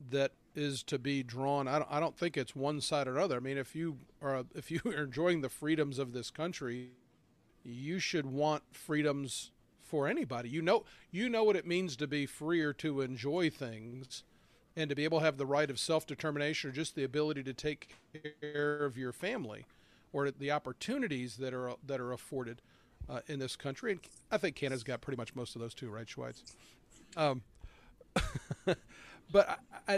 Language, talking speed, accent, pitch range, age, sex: English, 195 wpm, American, 135-165 Hz, 40-59, male